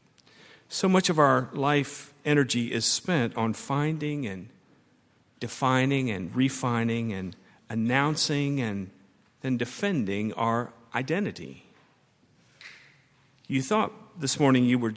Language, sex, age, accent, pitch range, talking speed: English, male, 50-69, American, 115-155 Hz, 110 wpm